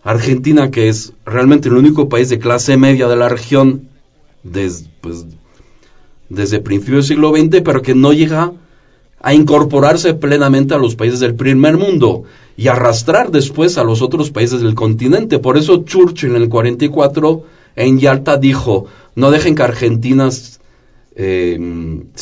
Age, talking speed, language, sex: 40-59, 155 wpm, Spanish, male